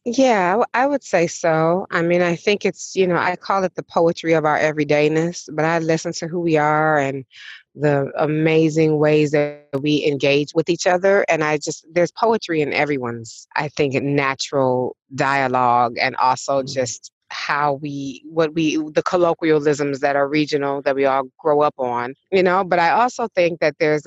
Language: English